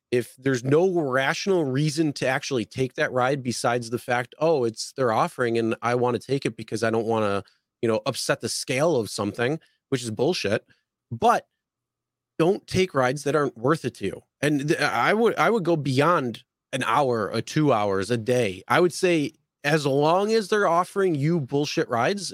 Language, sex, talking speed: English, male, 195 wpm